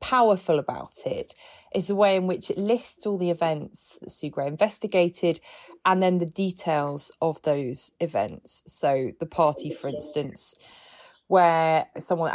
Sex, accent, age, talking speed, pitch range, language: female, British, 20-39, 150 wpm, 160-195 Hz, English